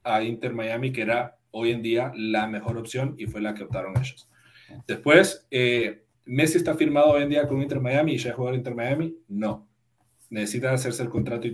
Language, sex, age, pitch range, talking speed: English, male, 40-59, 110-135 Hz, 210 wpm